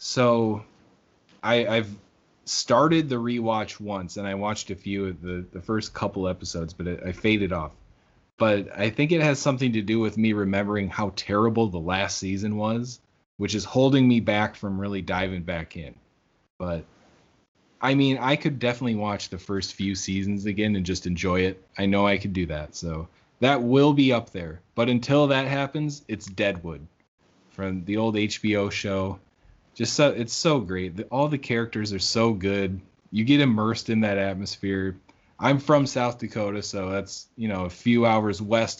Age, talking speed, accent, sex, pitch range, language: 20-39, 180 wpm, American, male, 95-115 Hz, English